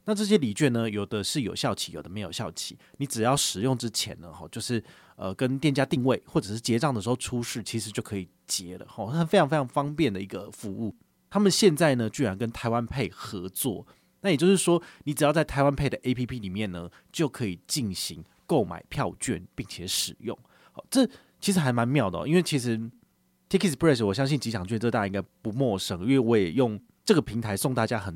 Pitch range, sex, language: 105-150 Hz, male, Chinese